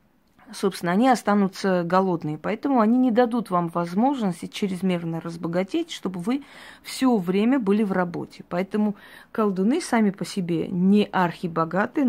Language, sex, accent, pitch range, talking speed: Russian, female, native, 175-230 Hz, 130 wpm